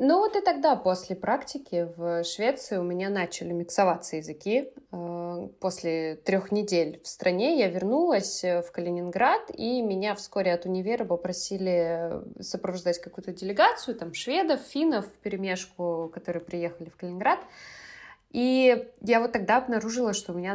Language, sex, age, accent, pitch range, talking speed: Russian, female, 20-39, native, 175-225 Hz, 135 wpm